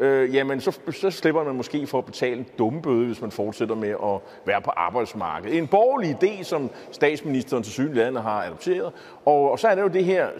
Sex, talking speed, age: male, 215 wpm, 30-49